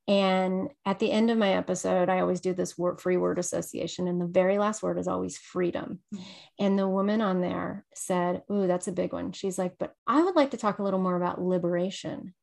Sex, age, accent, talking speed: female, 30-49, American, 225 wpm